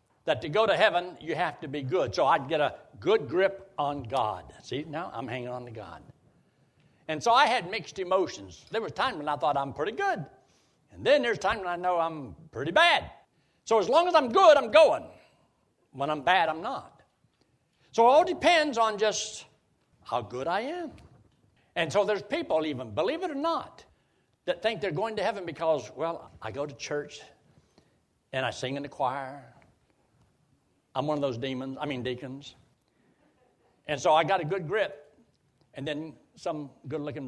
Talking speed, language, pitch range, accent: 190 wpm, English, 135-225 Hz, American